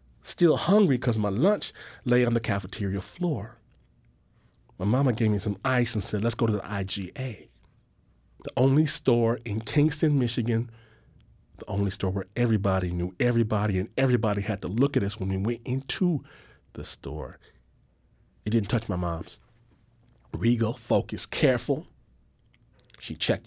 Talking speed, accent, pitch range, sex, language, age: 150 wpm, American, 100-125 Hz, male, English, 40-59